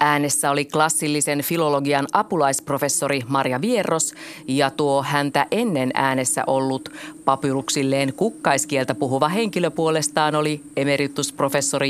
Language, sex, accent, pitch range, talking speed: Finnish, female, native, 135-160 Hz, 100 wpm